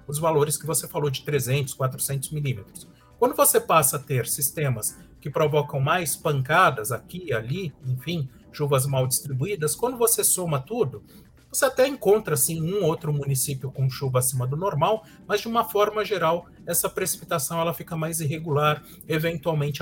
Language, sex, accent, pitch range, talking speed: Portuguese, male, Brazilian, 140-180 Hz, 165 wpm